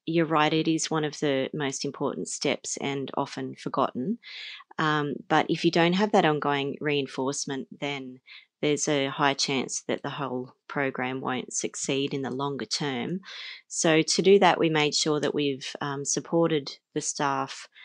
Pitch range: 140-155 Hz